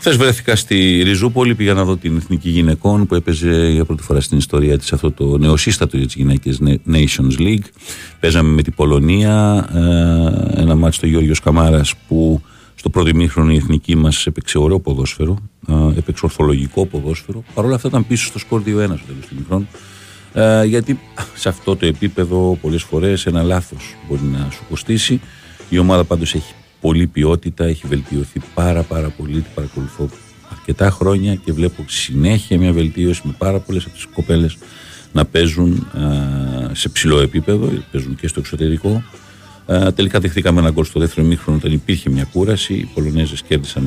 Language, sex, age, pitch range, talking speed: Greek, male, 50-69, 75-100 Hz, 165 wpm